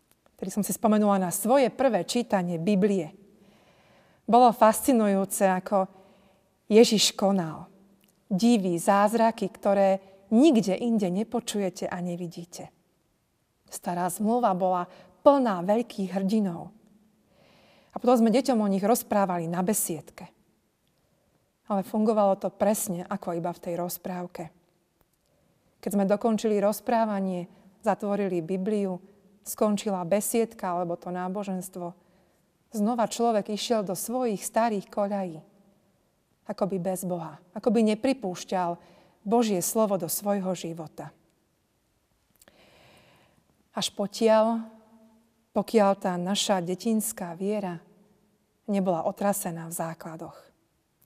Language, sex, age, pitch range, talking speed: Slovak, female, 40-59, 185-220 Hz, 100 wpm